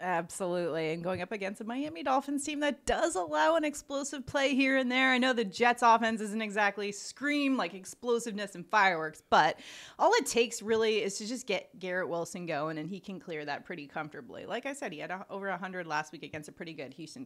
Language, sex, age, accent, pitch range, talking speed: English, female, 30-49, American, 170-230 Hz, 225 wpm